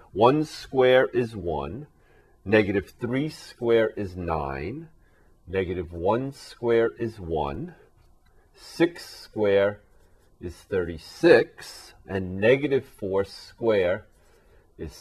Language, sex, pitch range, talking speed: English, male, 85-110 Hz, 90 wpm